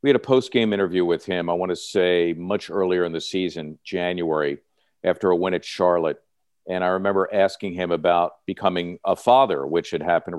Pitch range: 90-115 Hz